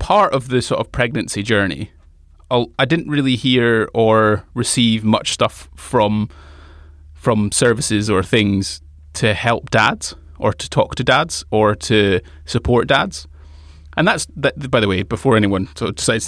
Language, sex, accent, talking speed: English, male, British, 160 wpm